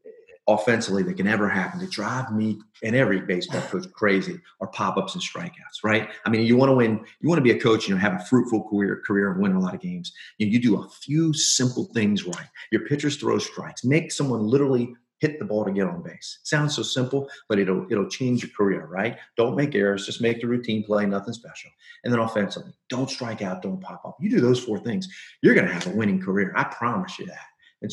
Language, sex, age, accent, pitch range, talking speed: English, male, 40-59, American, 105-155 Hz, 240 wpm